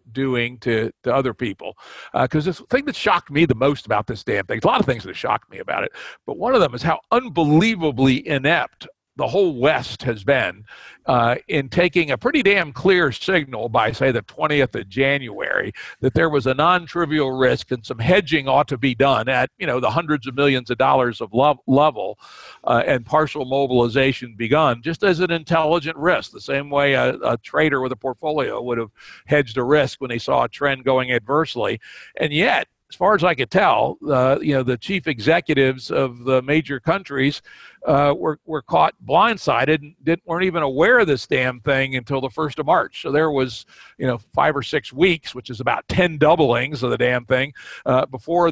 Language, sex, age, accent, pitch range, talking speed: English, male, 60-79, American, 130-160 Hz, 205 wpm